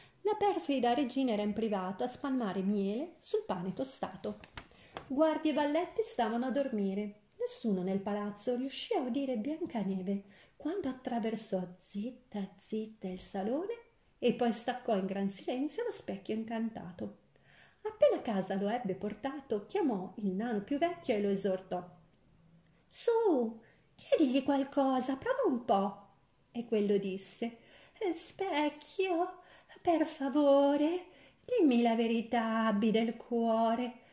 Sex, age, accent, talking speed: female, 40-59, native, 125 wpm